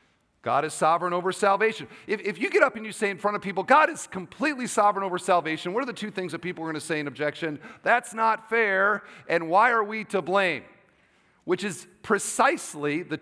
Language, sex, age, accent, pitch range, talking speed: English, male, 40-59, American, 170-235 Hz, 225 wpm